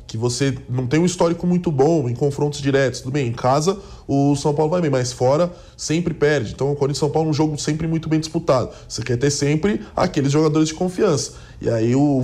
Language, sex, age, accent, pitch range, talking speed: English, male, 20-39, Brazilian, 130-170 Hz, 230 wpm